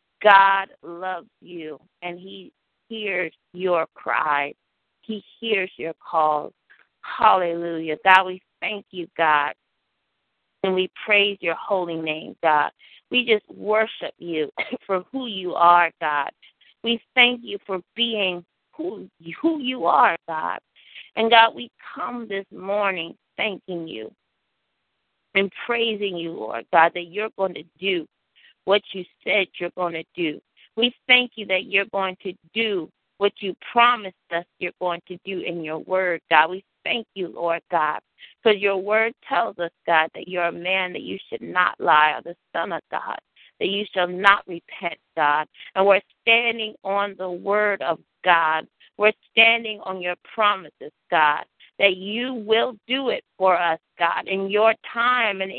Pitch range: 170-215 Hz